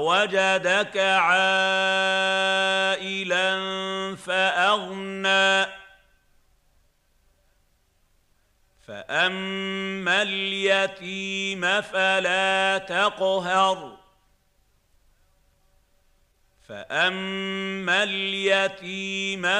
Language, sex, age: Arabic, male, 50-69